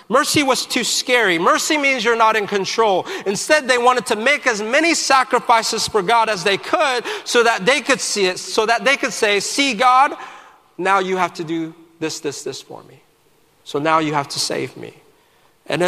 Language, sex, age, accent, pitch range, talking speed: English, male, 40-59, American, 170-255 Hz, 205 wpm